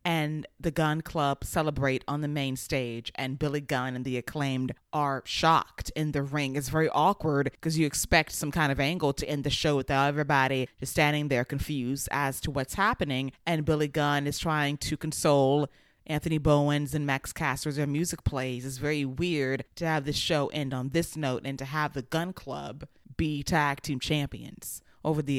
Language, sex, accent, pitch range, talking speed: English, female, American, 140-160 Hz, 195 wpm